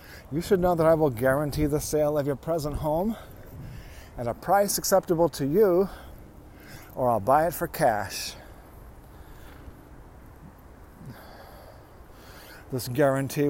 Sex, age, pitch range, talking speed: male, 50-69, 110-155 Hz, 120 wpm